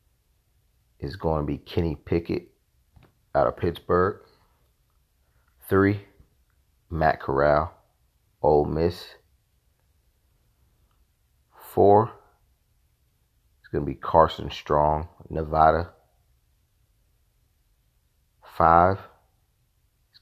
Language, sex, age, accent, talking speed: English, male, 40-59, American, 70 wpm